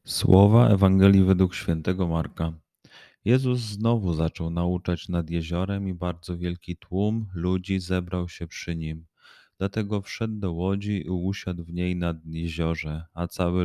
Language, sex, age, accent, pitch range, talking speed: Polish, male, 30-49, native, 80-95 Hz, 140 wpm